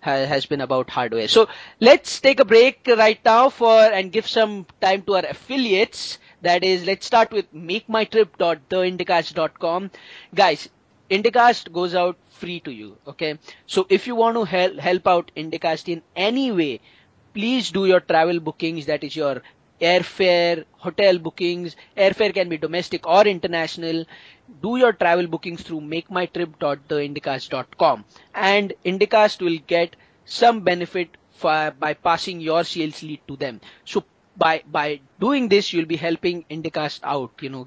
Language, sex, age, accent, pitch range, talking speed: English, male, 20-39, Indian, 165-200 Hz, 155 wpm